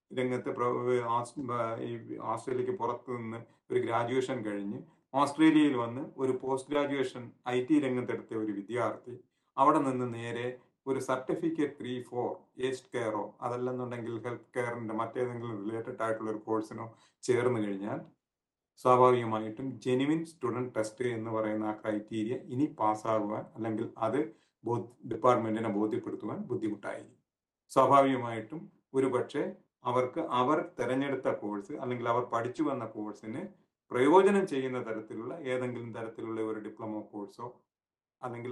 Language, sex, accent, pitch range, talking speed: Malayalam, male, native, 110-130 Hz, 110 wpm